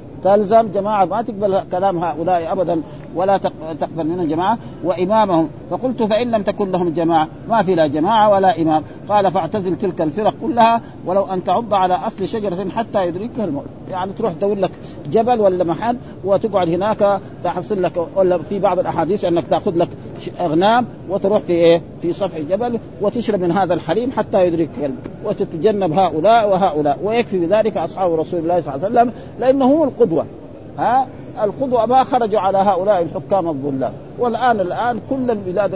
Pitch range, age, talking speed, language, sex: 170-215 Hz, 50-69, 155 wpm, Arabic, male